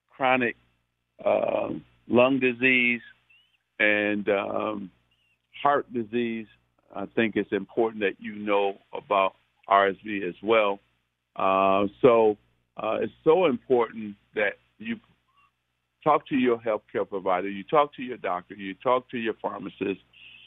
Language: English